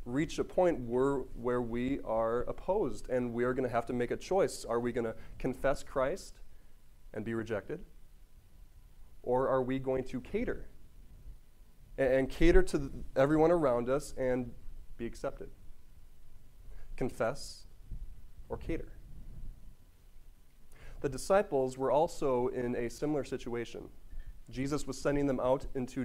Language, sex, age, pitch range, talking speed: English, male, 20-39, 120-145 Hz, 135 wpm